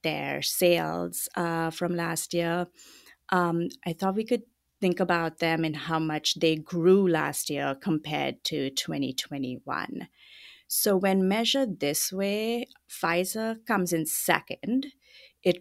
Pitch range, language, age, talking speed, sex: 160-220 Hz, English, 30-49, 130 wpm, female